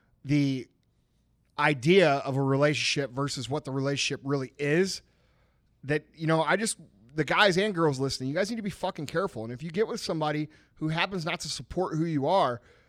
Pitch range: 135-180 Hz